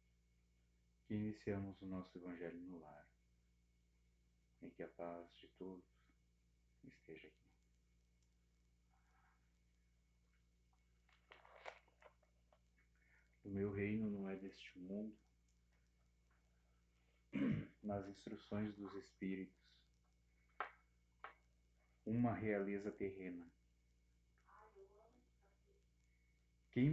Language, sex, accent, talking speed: Portuguese, male, Brazilian, 65 wpm